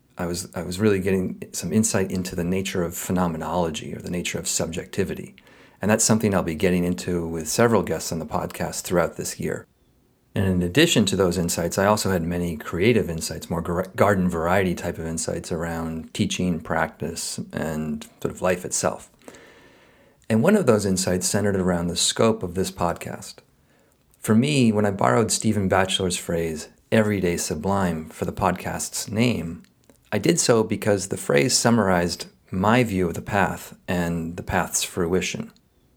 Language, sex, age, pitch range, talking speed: English, male, 40-59, 90-105 Hz, 170 wpm